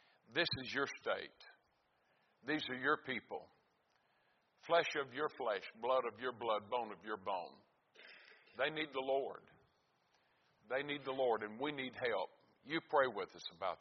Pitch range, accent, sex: 115-135 Hz, American, male